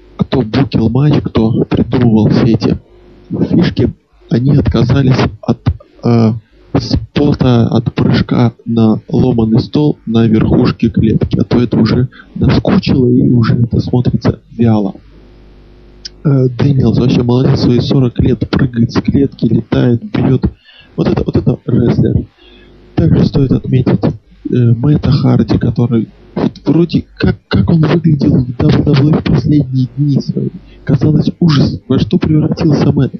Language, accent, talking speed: Russian, native, 130 wpm